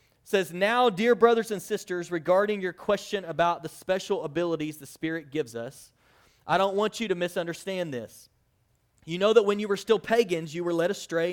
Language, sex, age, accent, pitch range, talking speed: English, male, 30-49, American, 150-190 Hz, 190 wpm